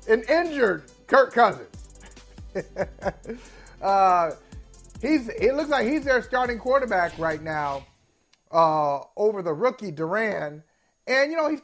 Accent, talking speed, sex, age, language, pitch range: American, 125 wpm, male, 30-49, English, 165-225 Hz